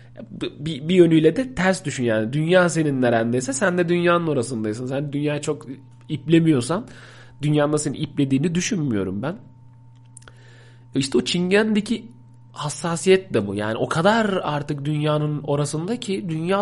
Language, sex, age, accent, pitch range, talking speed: Turkish, male, 40-59, native, 120-155 Hz, 135 wpm